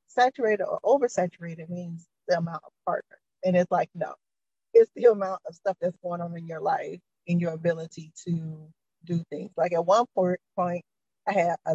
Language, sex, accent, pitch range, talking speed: English, female, American, 170-205 Hz, 185 wpm